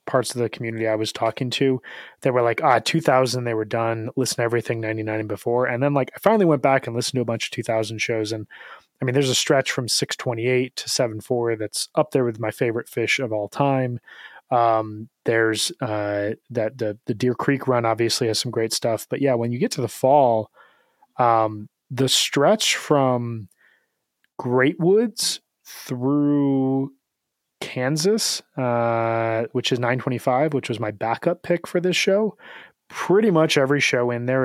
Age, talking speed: 20-39, 185 wpm